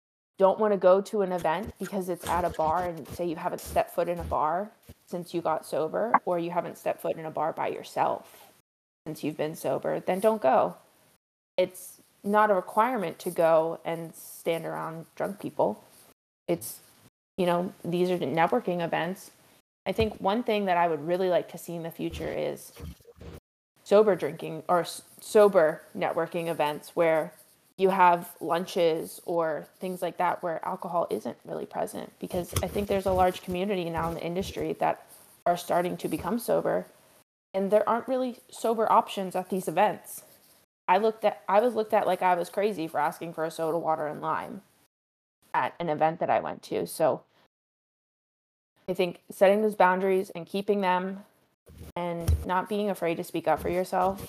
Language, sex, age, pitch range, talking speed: English, female, 20-39, 165-195 Hz, 180 wpm